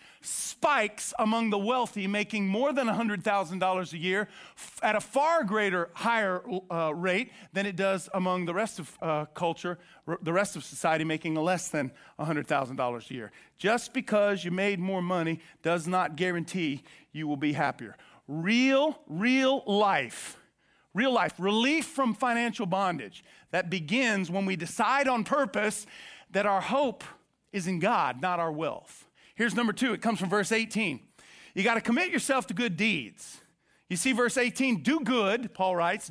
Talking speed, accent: 165 wpm, American